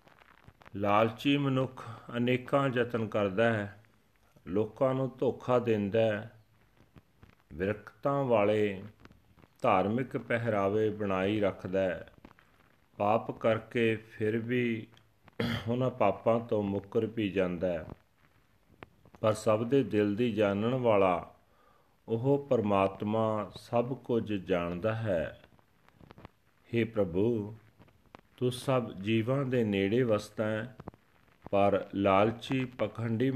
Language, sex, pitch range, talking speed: Punjabi, male, 100-120 Hz, 90 wpm